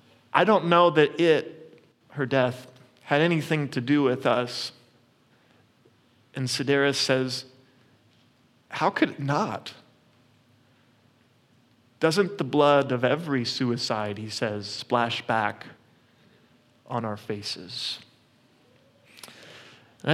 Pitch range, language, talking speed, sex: 120-140 Hz, English, 100 wpm, male